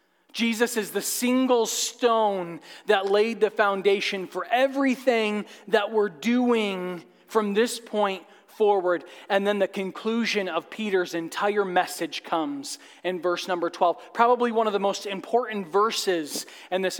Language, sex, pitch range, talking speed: English, male, 165-210 Hz, 140 wpm